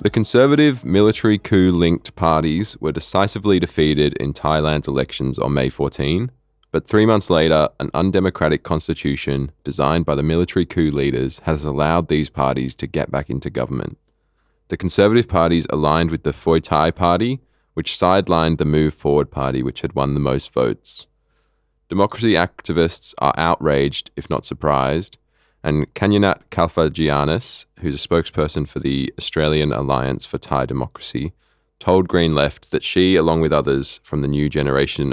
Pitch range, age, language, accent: 70-85 Hz, 20-39, English, Australian